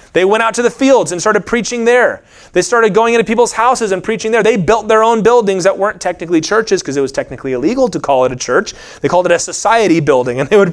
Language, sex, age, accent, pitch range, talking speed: English, male, 30-49, American, 145-235 Hz, 265 wpm